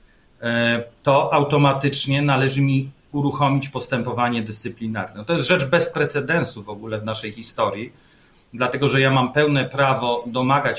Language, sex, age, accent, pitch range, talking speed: Polish, male, 40-59, native, 120-150 Hz, 135 wpm